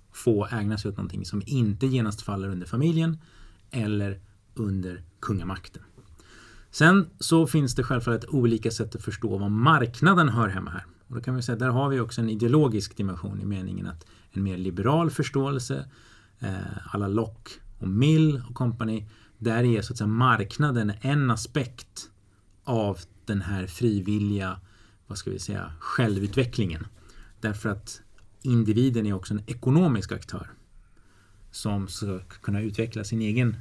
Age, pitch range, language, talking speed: 30-49, 100-120 Hz, Swedish, 155 wpm